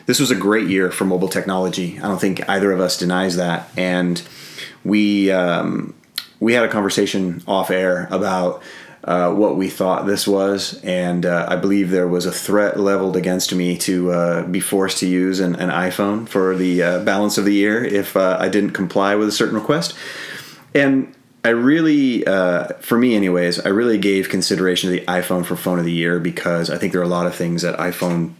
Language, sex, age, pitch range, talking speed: English, male, 30-49, 90-100 Hz, 205 wpm